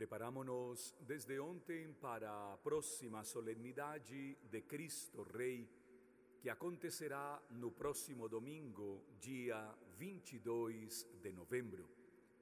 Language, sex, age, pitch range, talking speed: Portuguese, male, 40-59, 120-190 Hz, 90 wpm